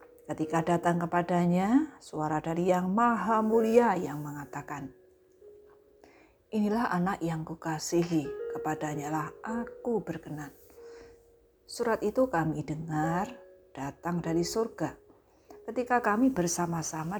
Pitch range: 160-235 Hz